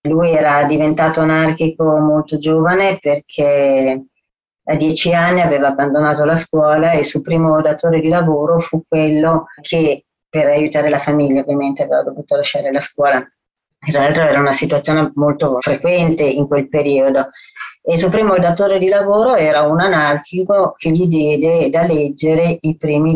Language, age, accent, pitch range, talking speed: Italian, 30-49, native, 145-165 Hz, 155 wpm